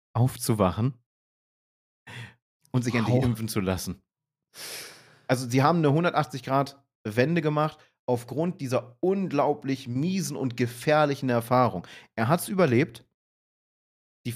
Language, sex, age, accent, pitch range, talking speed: German, male, 30-49, German, 115-155 Hz, 105 wpm